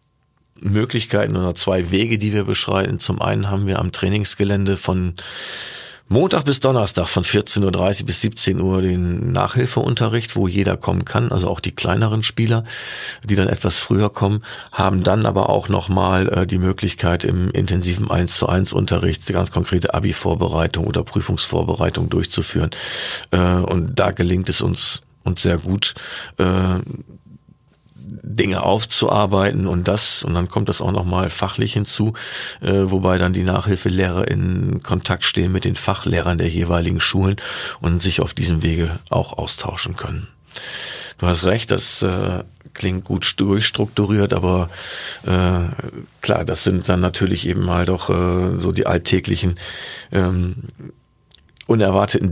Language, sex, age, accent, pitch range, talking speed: German, male, 40-59, German, 90-105 Hz, 140 wpm